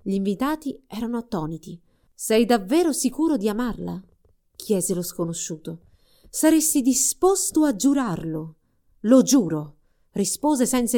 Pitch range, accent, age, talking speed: 175-255 Hz, native, 30-49, 110 wpm